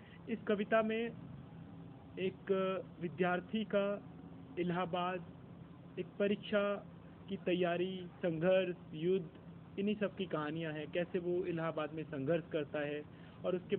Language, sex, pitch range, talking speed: Hindi, male, 155-180 Hz, 120 wpm